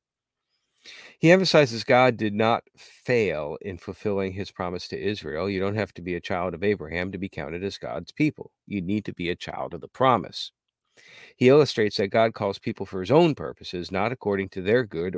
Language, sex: English, male